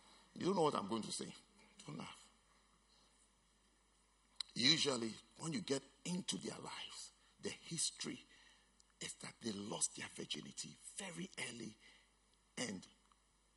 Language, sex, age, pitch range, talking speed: English, male, 50-69, 165-235 Hz, 125 wpm